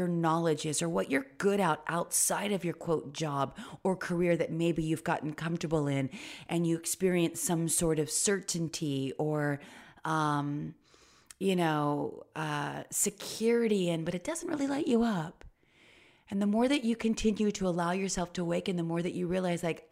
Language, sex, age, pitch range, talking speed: English, female, 30-49, 150-200 Hz, 175 wpm